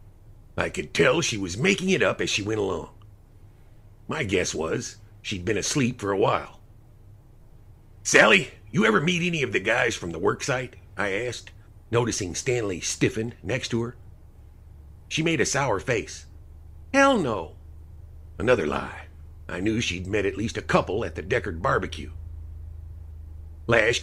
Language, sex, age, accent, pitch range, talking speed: English, male, 50-69, American, 85-115 Hz, 155 wpm